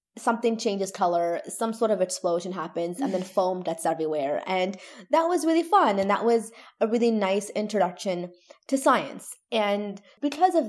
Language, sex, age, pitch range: English, female, 20-39, 190-250 Hz